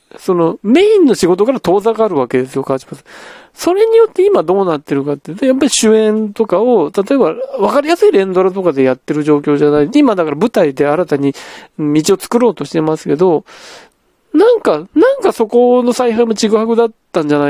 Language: Japanese